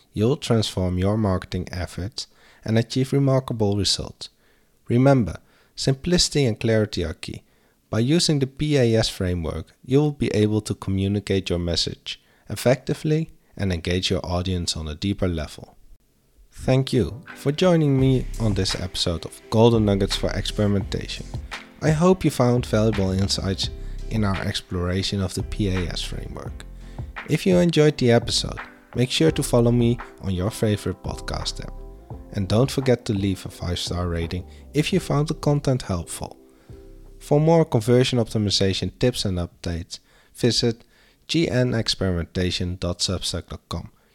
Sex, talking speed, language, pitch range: male, 135 wpm, English, 90-125 Hz